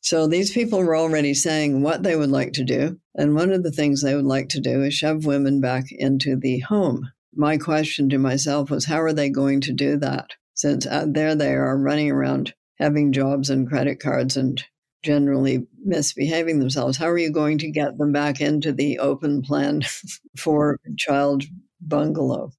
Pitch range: 135-155 Hz